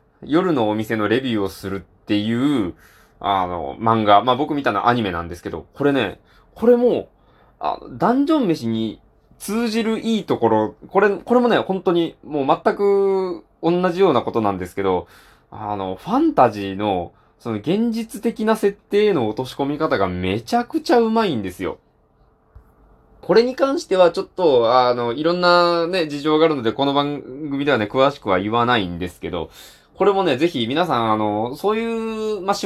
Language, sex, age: Japanese, male, 20-39